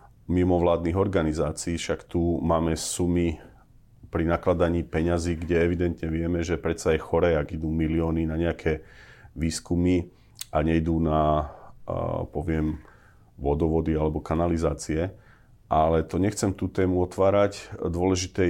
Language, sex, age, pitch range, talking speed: Slovak, male, 40-59, 80-95 Hz, 115 wpm